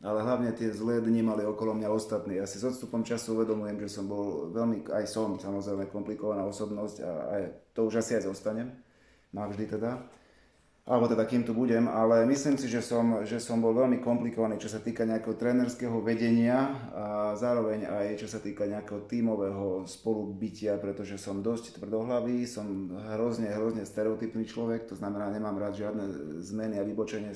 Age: 30-49